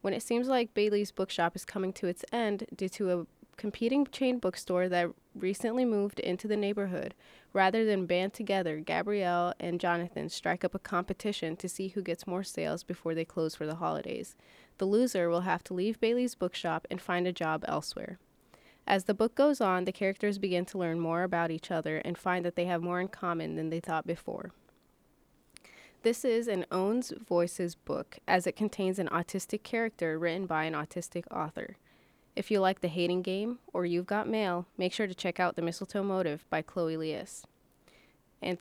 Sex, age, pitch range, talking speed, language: female, 20-39, 175-205 Hz, 195 wpm, English